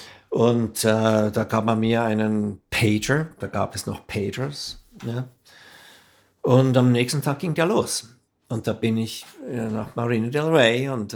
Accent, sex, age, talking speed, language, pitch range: German, male, 50-69, 160 wpm, German, 105-125 Hz